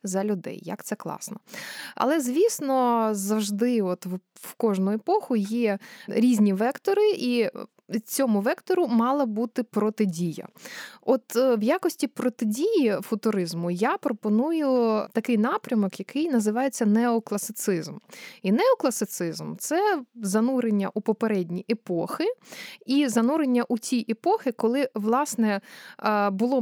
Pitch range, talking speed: 205-265 Hz, 110 wpm